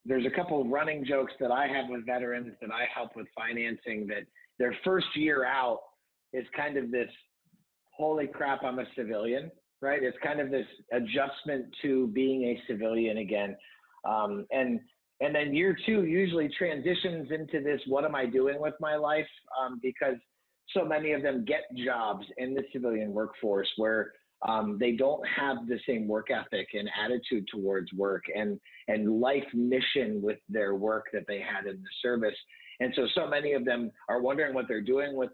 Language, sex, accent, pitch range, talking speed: English, male, American, 110-145 Hz, 185 wpm